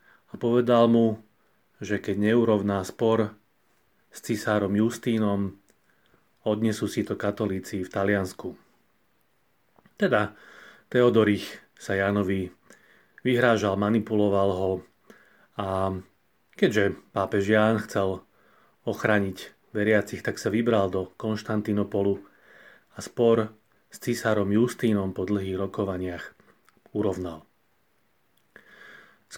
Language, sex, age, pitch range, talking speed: Slovak, male, 30-49, 100-120 Hz, 90 wpm